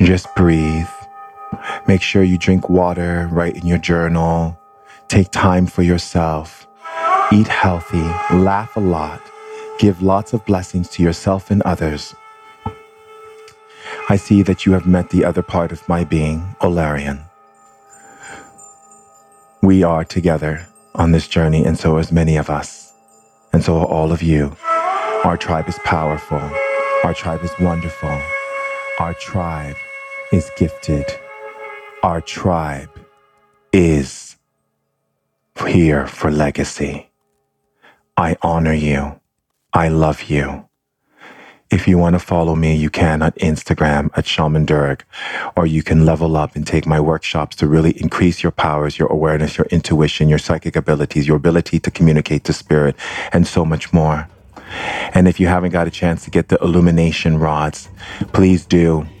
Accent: American